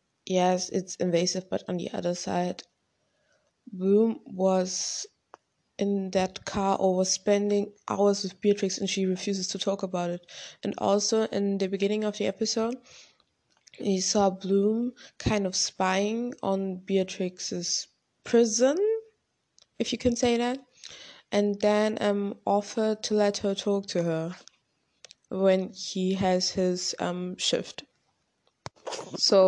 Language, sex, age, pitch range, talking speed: German, female, 20-39, 185-215 Hz, 130 wpm